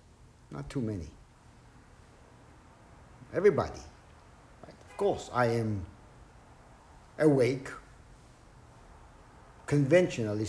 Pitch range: 110-145 Hz